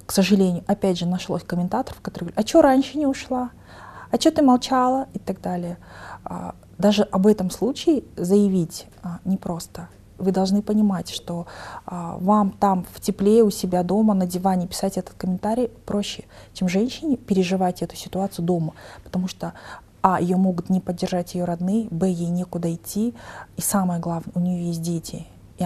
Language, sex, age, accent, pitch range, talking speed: Russian, female, 20-39, native, 175-205 Hz, 165 wpm